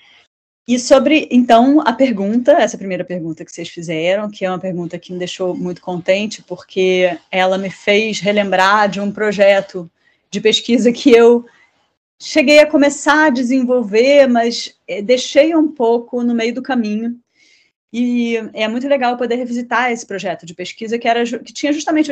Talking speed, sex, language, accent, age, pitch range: 160 wpm, female, Portuguese, Brazilian, 30-49, 205-270 Hz